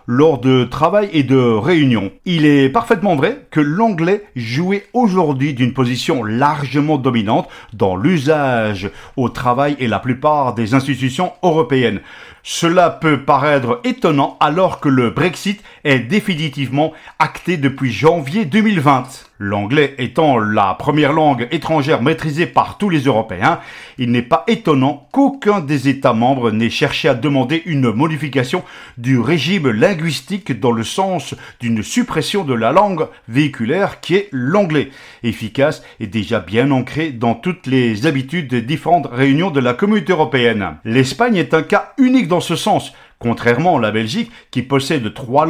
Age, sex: 40-59, male